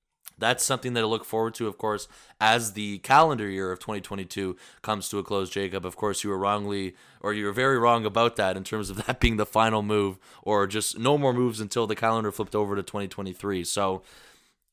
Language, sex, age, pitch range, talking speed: English, male, 20-39, 100-115 Hz, 210 wpm